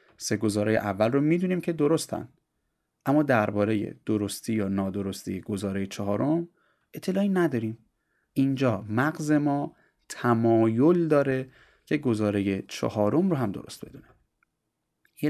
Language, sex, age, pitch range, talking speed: Persian, male, 30-49, 105-135 Hz, 115 wpm